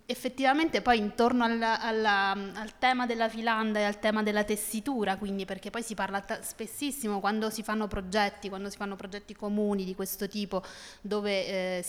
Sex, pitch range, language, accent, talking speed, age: female, 190-220 Hz, Italian, native, 170 wpm, 20-39